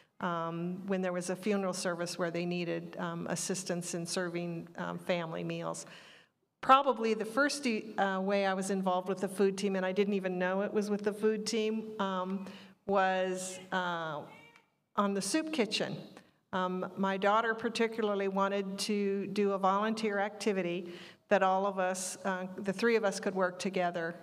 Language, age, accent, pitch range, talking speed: English, 50-69, American, 180-200 Hz, 170 wpm